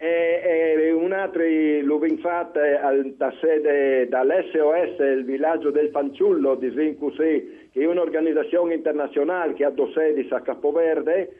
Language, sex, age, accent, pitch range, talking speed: Italian, male, 50-69, native, 150-195 Hz, 125 wpm